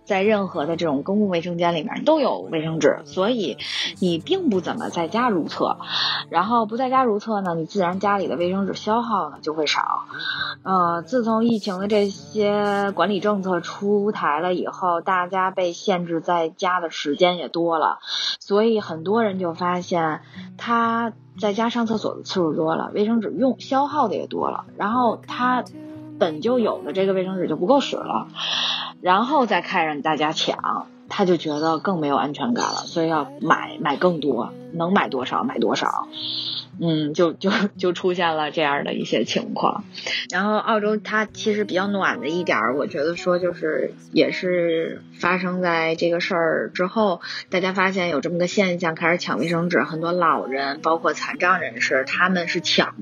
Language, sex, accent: Chinese, female, native